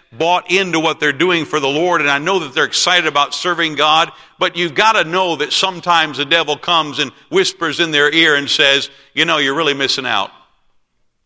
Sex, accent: male, American